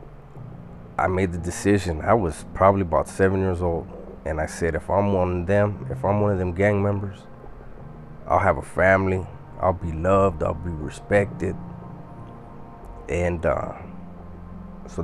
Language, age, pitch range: English, 30-49, 85-100 Hz